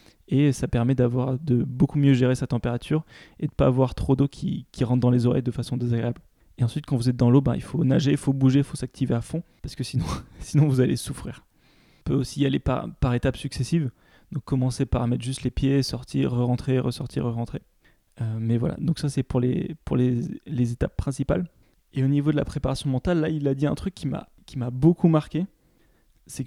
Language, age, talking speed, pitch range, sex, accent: French, 20-39, 240 wpm, 125-150 Hz, male, French